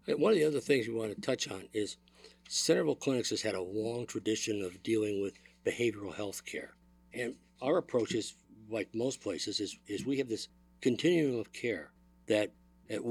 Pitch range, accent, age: 100-125 Hz, American, 60-79